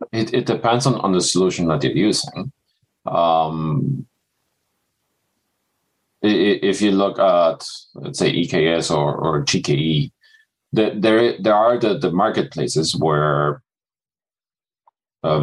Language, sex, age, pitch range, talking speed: English, male, 40-59, 75-100 Hz, 120 wpm